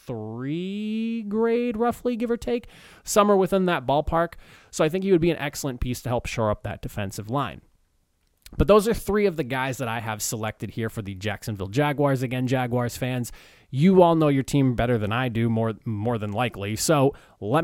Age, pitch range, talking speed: 20-39, 110-145 Hz, 210 wpm